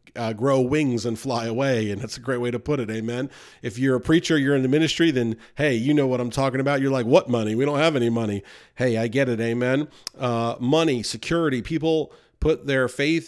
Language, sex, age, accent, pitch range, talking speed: English, male, 40-59, American, 120-155 Hz, 235 wpm